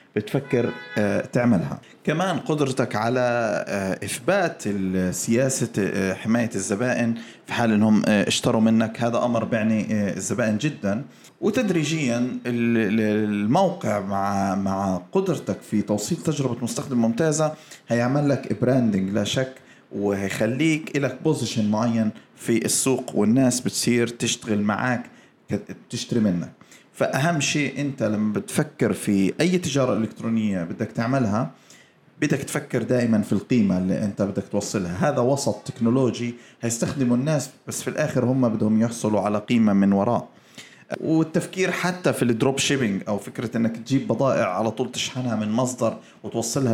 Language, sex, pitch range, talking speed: Arabic, male, 110-135 Hz, 125 wpm